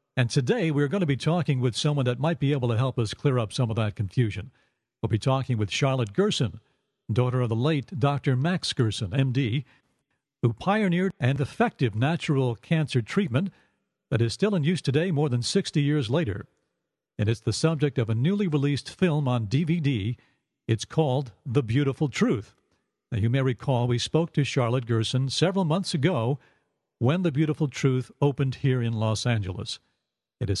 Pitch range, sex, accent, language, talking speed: 120-155 Hz, male, American, English, 180 wpm